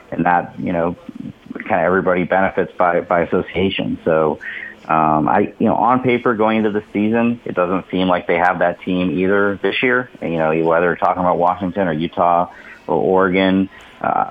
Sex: male